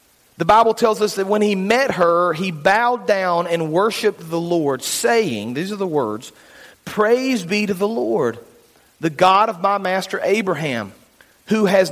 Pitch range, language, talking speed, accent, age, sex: 155-205 Hz, English, 170 wpm, American, 40-59, male